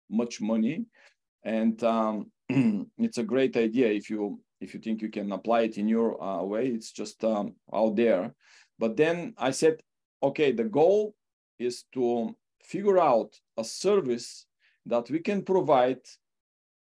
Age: 40-59